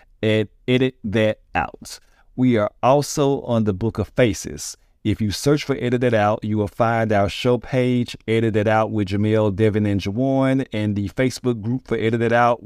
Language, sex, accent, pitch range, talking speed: English, male, American, 105-135 Hz, 195 wpm